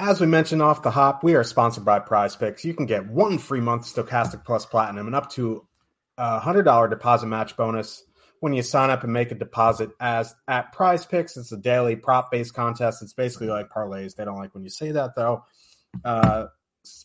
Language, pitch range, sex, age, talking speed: English, 115-140 Hz, male, 30-49, 220 wpm